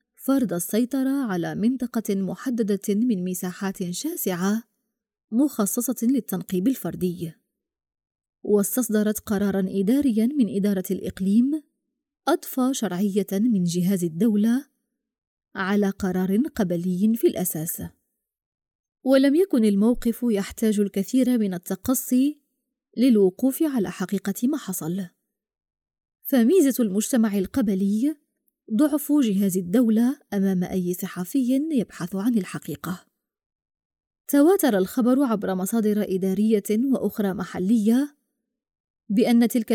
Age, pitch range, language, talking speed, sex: 20-39, 195-255 Hz, Arabic, 90 wpm, female